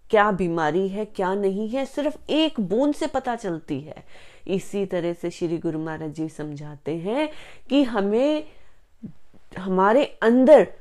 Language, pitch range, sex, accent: Hindi, 165-220 Hz, female, native